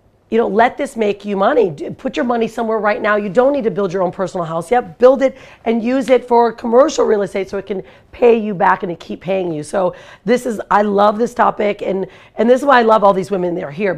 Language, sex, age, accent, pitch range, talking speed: English, female, 40-59, American, 175-215 Hz, 270 wpm